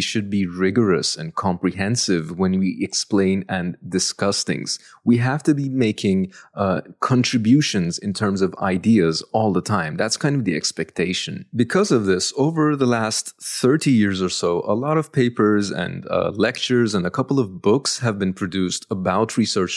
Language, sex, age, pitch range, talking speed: English, male, 30-49, 95-120 Hz, 175 wpm